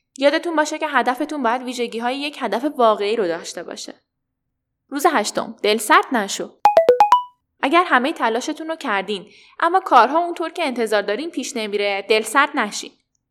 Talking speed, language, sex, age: 155 wpm, Persian, female, 10-29